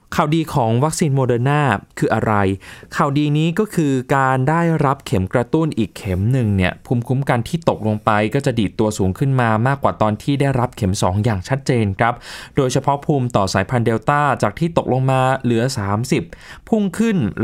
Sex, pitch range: male, 105-145 Hz